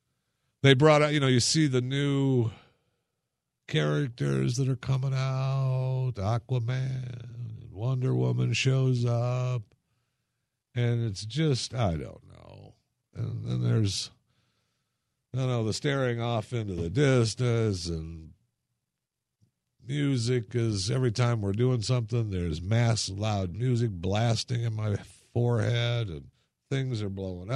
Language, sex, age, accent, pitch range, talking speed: English, male, 50-69, American, 105-130 Hz, 125 wpm